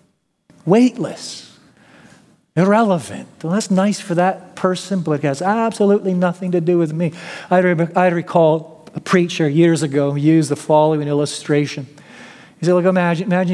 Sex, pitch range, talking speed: male, 130-175 Hz, 155 wpm